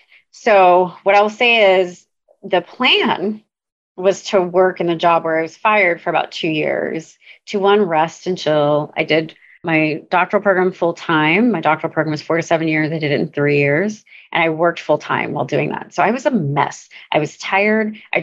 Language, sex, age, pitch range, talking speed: English, female, 30-49, 155-195 Hz, 210 wpm